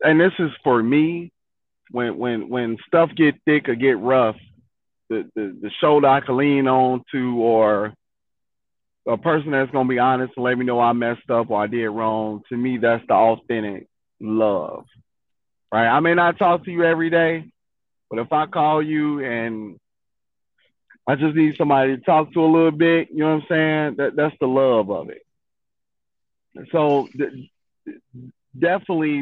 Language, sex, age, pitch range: English, male, 30-49, 120-150 Hz